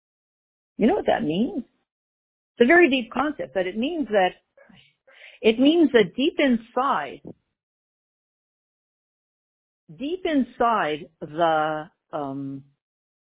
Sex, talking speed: female, 105 wpm